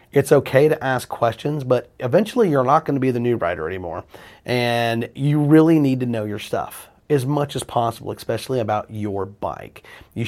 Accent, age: American, 30-49